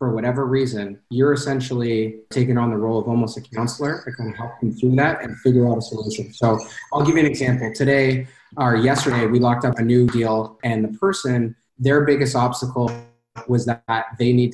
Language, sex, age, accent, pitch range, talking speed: English, male, 30-49, American, 115-130 Hz, 205 wpm